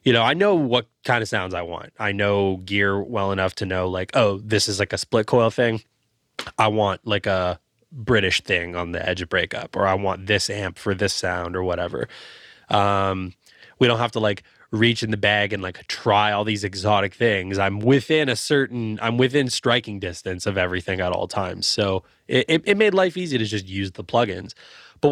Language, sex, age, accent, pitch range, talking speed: English, male, 20-39, American, 95-120 Hz, 215 wpm